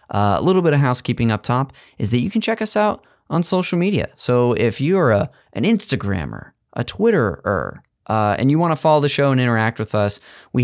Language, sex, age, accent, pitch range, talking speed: English, male, 20-39, American, 105-150 Hz, 220 wpm